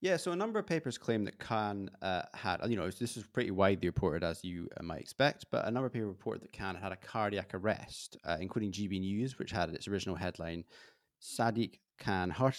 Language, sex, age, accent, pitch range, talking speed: English, male, 20-39, British, 95-120 Hz, 225 wpm